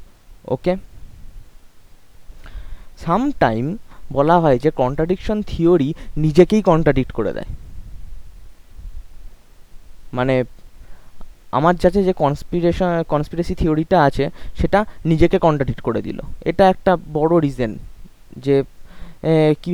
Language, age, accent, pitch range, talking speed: Bengali, 20-39, native, 115-160 Hz, 70 wpm